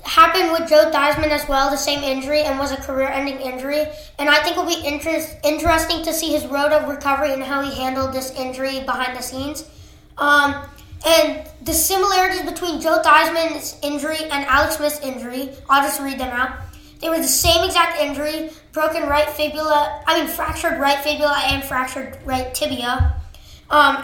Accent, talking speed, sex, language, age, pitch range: American, 180 wpm, female, English, 20-39, 270-310 Hz